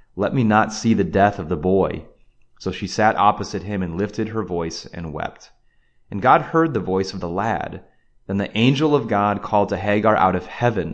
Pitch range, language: 90-115 Hz, English